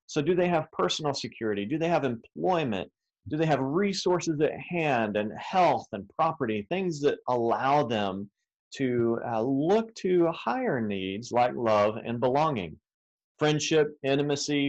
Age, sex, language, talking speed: 40-59, male, English, 145 wpm